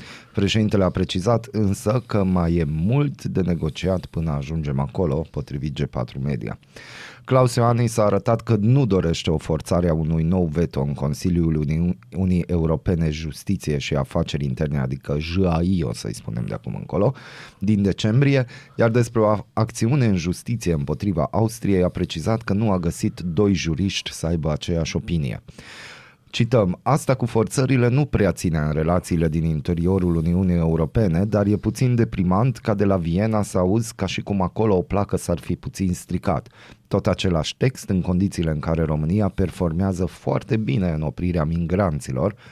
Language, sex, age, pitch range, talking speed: Romanian, male, 30-49, 85-115 Hz, 160 wpm